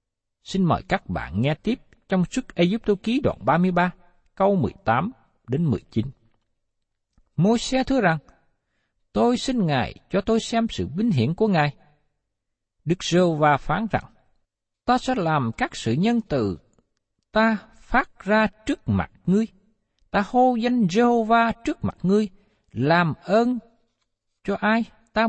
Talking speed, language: 140 wpm, Vietnamese